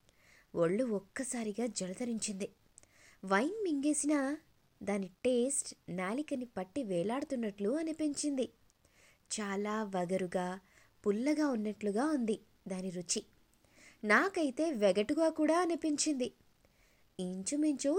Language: Telugu